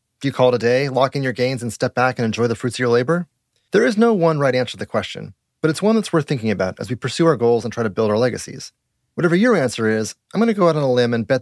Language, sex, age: English, male, 30-49